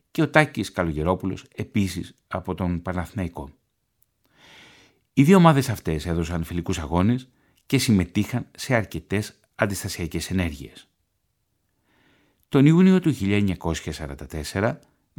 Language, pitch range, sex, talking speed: Greek, 85-125 Hz, male, 100 wpm